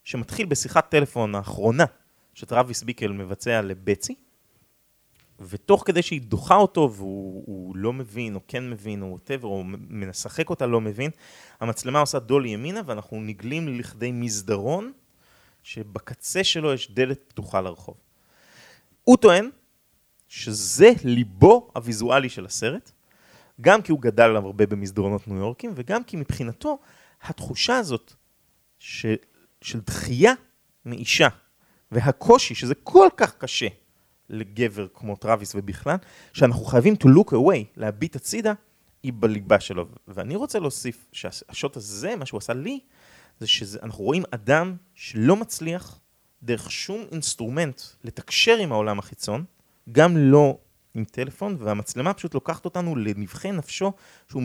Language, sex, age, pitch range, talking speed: Hebrew, male, 30-49, 110-160 Hz, 130 wpm